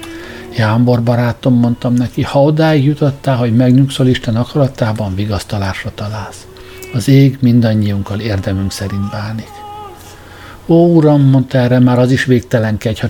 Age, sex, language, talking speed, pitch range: 60-79, male, Hungarian, 130 wpm, 105-130 Hz